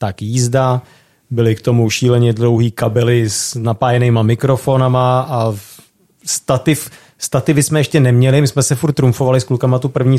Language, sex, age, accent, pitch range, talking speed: Czech, male, 30-49, native, 115-135 Hz, 145 wpm